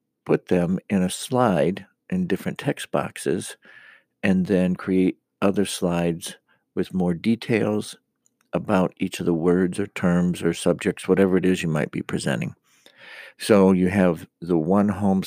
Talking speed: 155 wpm